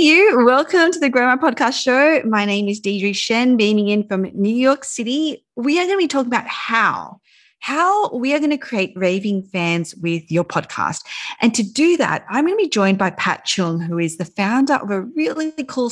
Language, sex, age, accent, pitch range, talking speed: English, female, 30-49, Australian, 175-270 Hz, 215 wpm